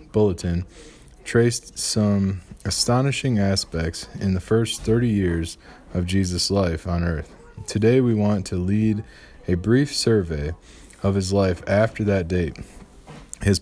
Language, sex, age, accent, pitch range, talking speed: English, male, 20-39, American, 90-110 Hz, 130 wpm